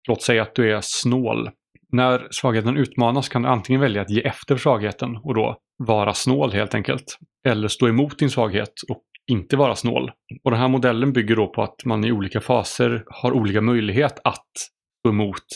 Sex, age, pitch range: male, 30-49, 110-130 Hz